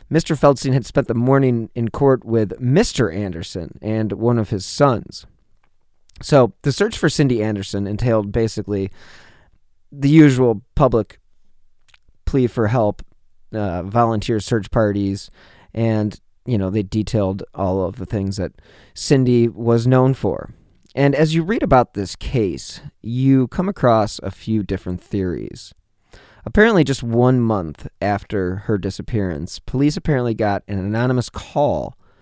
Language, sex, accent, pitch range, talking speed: English, male, American, 100-125 Hz, 140 wpm